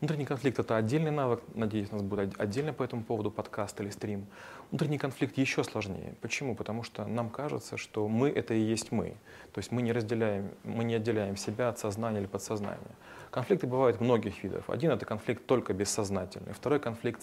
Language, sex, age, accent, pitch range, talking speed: Russian, male, 30-49, native, 100-115 Hz, 200 wpm